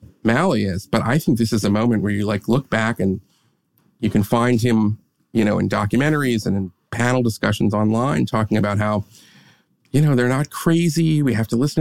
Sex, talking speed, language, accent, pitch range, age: male, 205 wpm, English, American, 110-140 Hz, 40-59